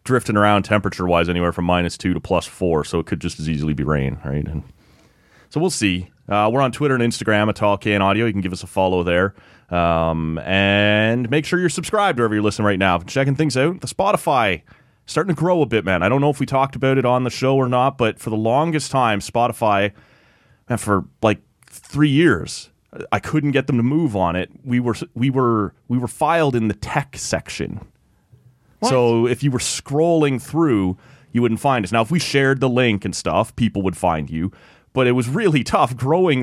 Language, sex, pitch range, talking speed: English, male, 95-135 Hz, 220 wpm